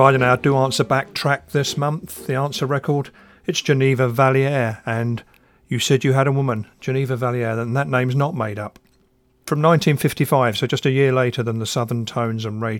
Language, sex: English, male